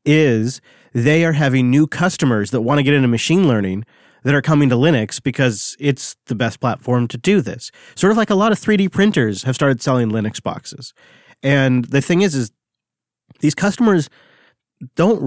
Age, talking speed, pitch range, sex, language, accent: 30-49, 185 wpm, 120-150 Hz, male, English, American